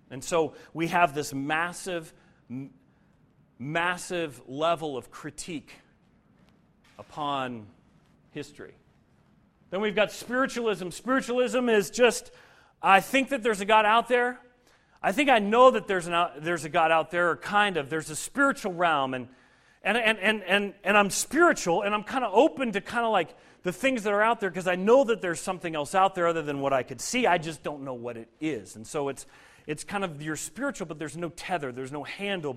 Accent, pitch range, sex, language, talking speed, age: American, 145-195 Hz, male, English, 200 wpm, 40-59